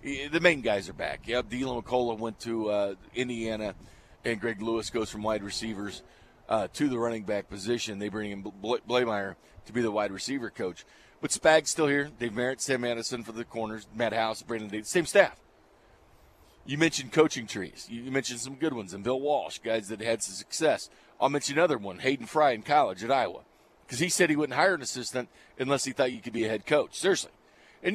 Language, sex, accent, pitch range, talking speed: English, male, American, 110-140 Hz, 215 wpm